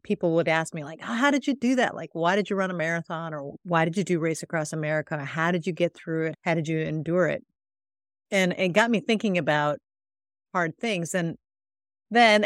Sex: female